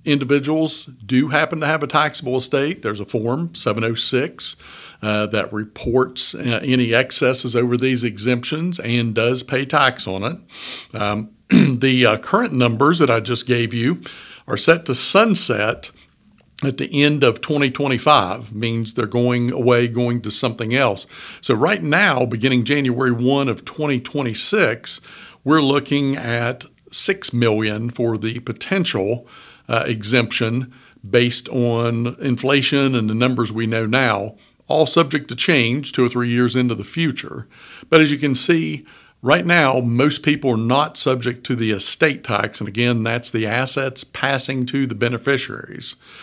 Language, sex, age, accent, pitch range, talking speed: English, male, 60-79, American, 120-140 Hz, 150 wpm